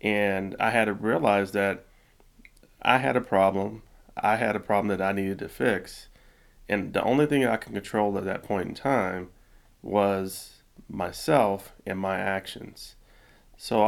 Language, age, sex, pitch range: English, 30-49, male, 95-110 Hz